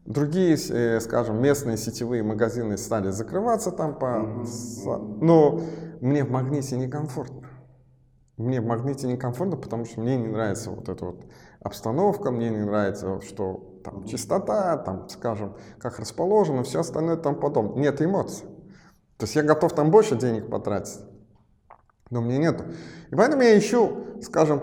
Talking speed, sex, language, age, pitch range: 145 wpm, male, Russian, 20-39, 110-145 Hz